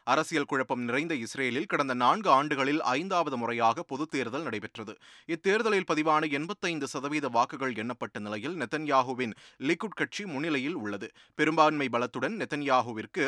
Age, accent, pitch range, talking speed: 30-49, native, 120-155 Hz, 120 wpm